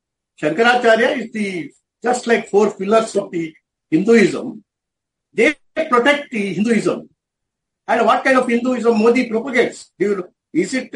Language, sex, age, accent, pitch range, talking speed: English, male, 50-69, Indian, 185-230 Hz, 130 wpm